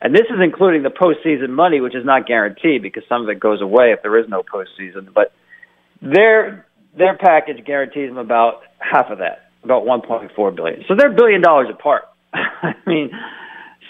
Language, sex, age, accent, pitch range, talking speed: English, male, 40-59, American, 120-170 Hz, 185 wpm